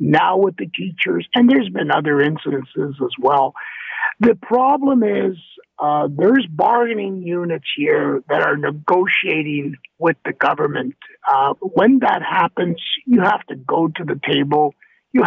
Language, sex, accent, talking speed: English, male, American, 145 wpm